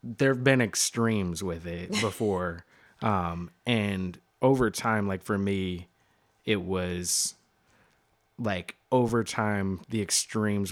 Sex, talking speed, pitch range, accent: male, 120 wpm, 95-115 Hz, American